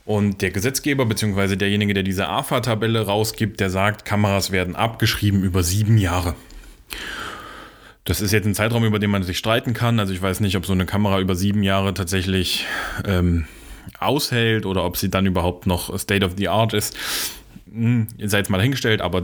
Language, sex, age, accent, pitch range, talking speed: German, male, 30-49, German, 95-115 Hz, 185 wpm